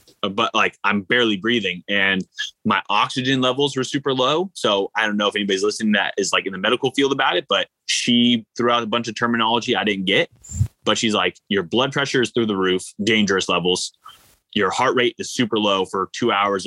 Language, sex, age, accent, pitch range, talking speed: English, male, 20-39, American, 100-125 Hz, 215 wpm